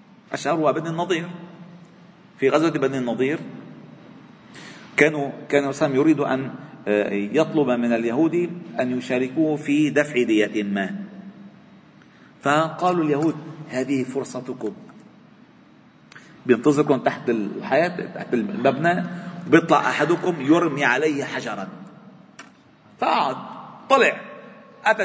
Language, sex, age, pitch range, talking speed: Arabic, male, 40-59, 130-200 Hz, 90 wpm